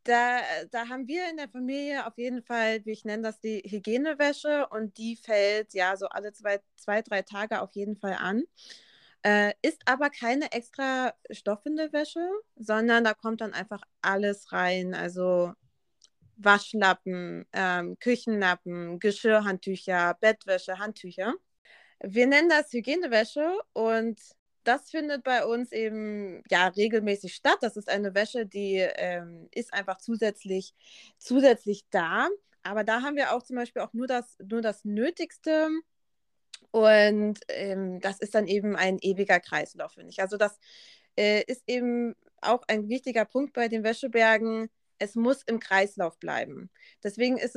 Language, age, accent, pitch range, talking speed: German, 20-39, German, 200-245 Hz, 150 wpm